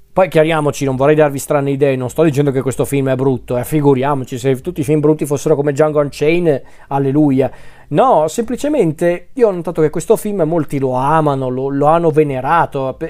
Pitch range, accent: 135-165 Hz, native